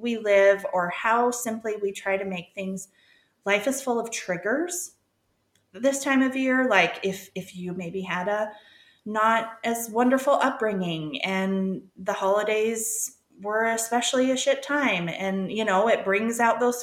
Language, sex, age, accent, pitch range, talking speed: English, female, 30-49, American, 180-245 Hz, 160 wpm